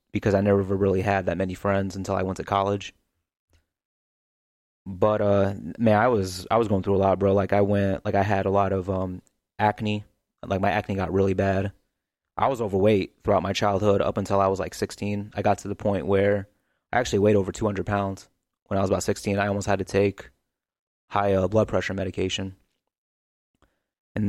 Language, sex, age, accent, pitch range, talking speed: English, male, 20-39, American, 95-105 Hz, 205 wpm